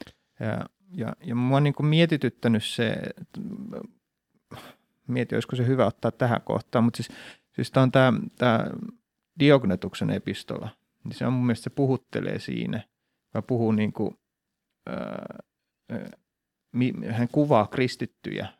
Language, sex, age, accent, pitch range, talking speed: Finnish, male, 30-49, native, 110-135 Hz, 125 wpm